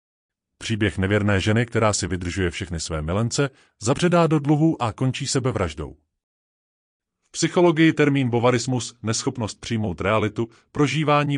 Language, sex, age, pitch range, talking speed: Czech, male, 30-49, 95-140 Hz, 120 wpm